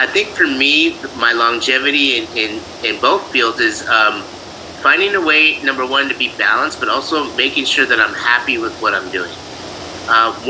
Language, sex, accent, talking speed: English, male, American, 190 wpm